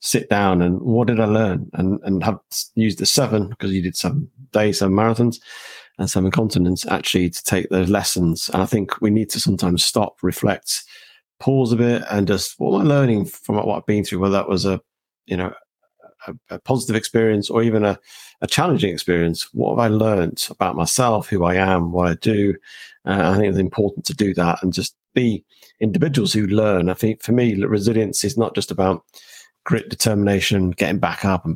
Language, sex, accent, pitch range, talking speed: English, male, British, 90-110 Hz, 205 wpm